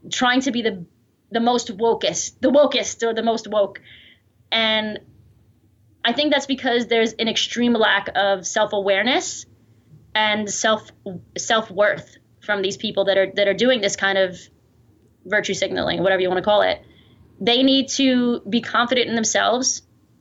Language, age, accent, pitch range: English, 20-39, American, 200-240 Hz